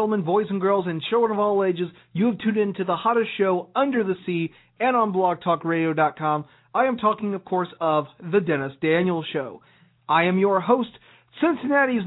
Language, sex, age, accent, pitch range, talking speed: English, male, 40-59, American, 160-220 Hz, 185 wpm